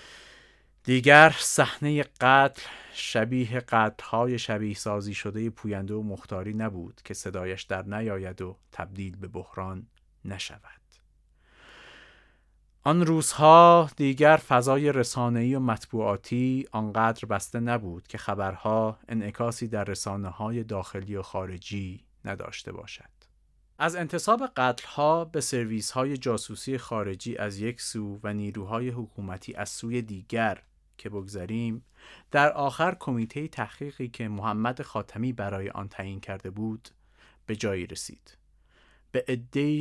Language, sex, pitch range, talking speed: Persian, male, 100-130 Hz, 120 wpm